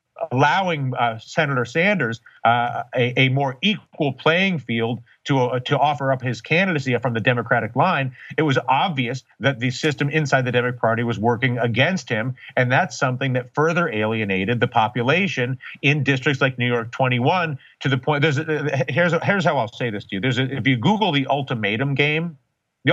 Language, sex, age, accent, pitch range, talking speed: English, male, 40-59, American, 120-150 Hz, 190 wpm